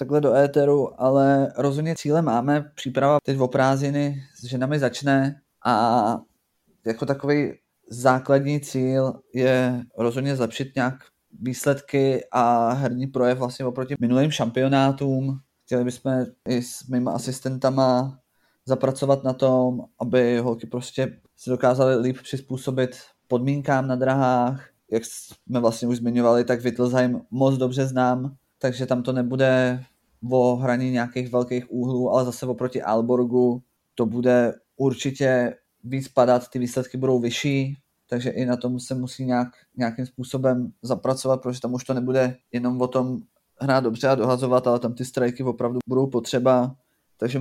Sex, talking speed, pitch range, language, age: male, 140 wpm, 125-135 Hz, Czech, 20-39